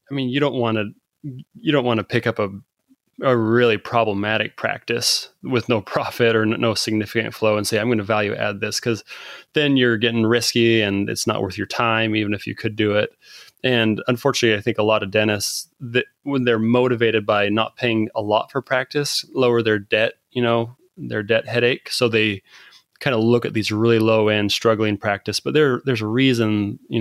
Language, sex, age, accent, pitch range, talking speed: English, male, 20-39, American, 110-130 Hz, 210 wpm